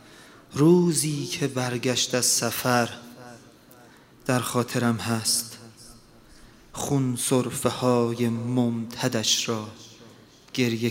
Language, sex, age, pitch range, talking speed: Persian, male, 30-49, 115-135 Hz, 75 wpm